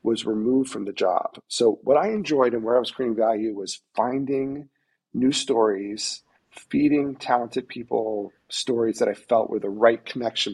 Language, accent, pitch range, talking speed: English, American, 110-140 Hz, 170 wpm